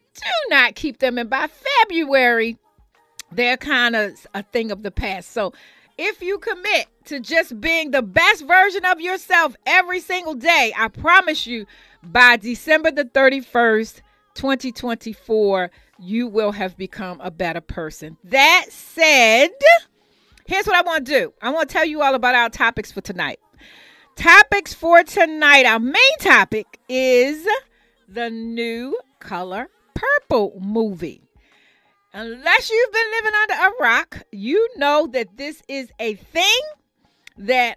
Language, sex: English, female